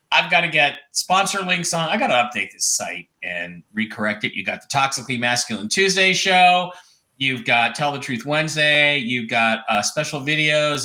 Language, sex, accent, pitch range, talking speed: English, male, American, 135-180 Hz, 185 wpm